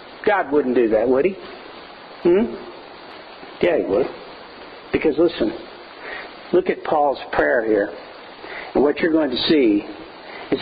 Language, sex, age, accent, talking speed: English, male, 50-69, American, 135 wpm